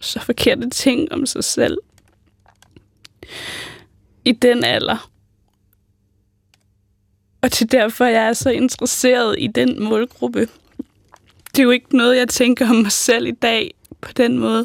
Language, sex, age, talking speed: Danish, female, 20-39, 145 wpm